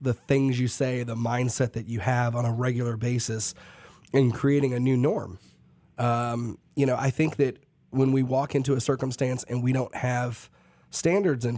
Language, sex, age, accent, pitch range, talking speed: English, male, 30-49, American, 125-150 Hz, 185 wpm